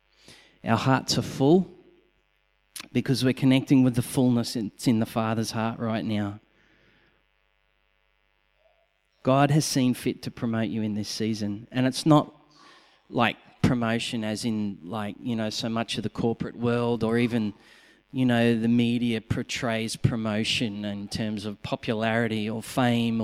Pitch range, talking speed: 110-145 Hz, 145 wpm